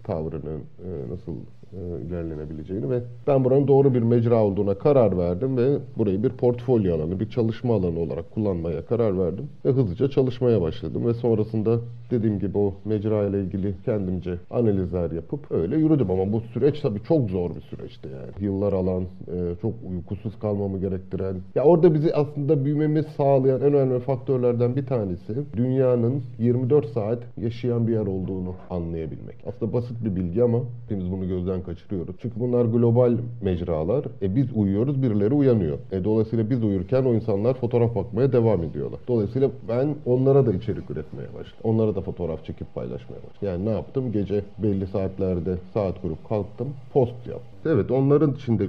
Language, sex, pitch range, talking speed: Turkish, male, 95-125 Hz, 160 wpm